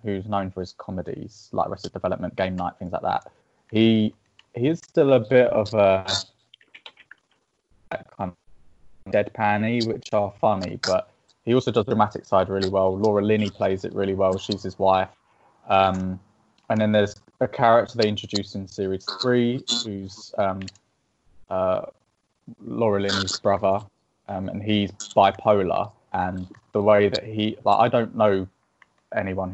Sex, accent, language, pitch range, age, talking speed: male, British, English, 95-110 Hz, 20-39, 160 wpm